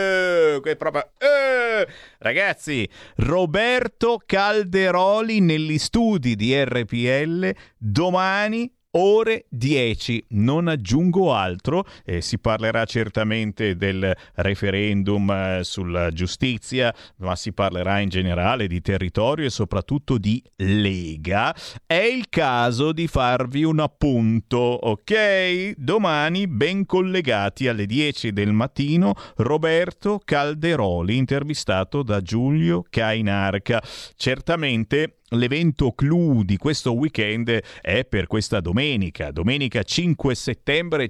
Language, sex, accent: Italian, male, native